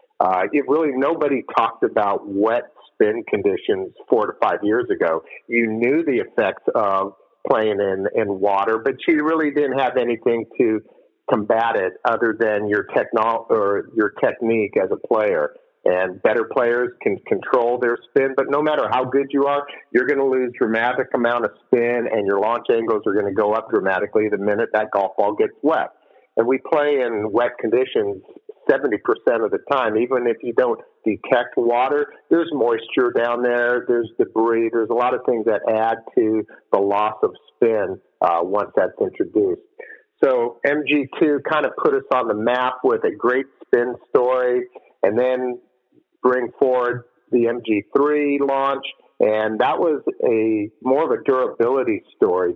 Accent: American